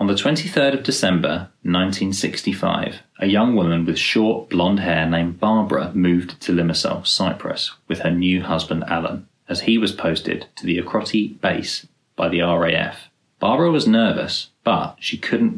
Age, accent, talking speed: 20-39, British, 160 wpm